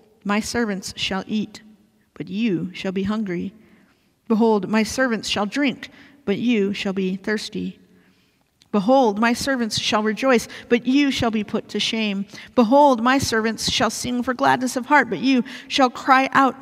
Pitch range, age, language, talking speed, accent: 200-245 Hz, 50-69, English, 165 wpm, American